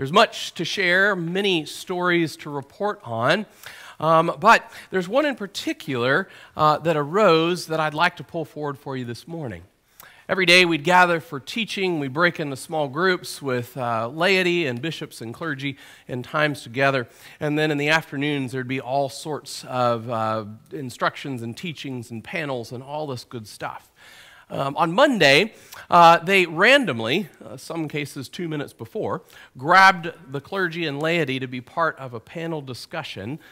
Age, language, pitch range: 40-59, English, 125-175 Hz